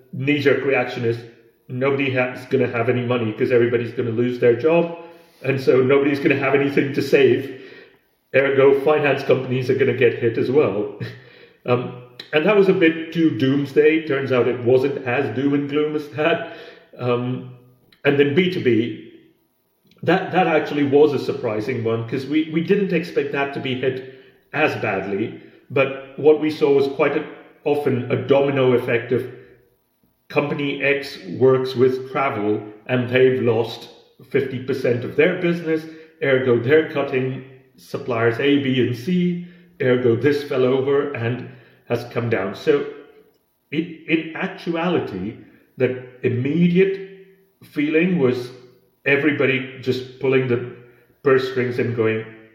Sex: male